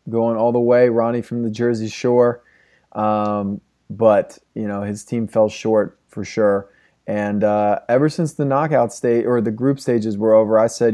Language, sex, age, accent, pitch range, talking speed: English, male, 20-39, American, 105-120 Hz, 185 wpm